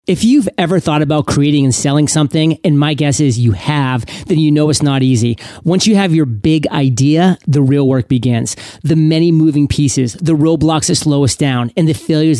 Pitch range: 140-160 Hz